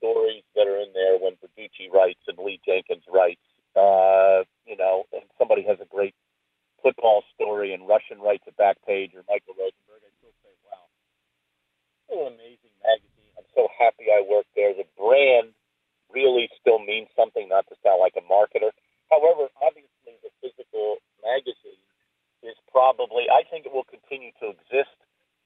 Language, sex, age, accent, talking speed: English, male, 50-69, American, 165 wpm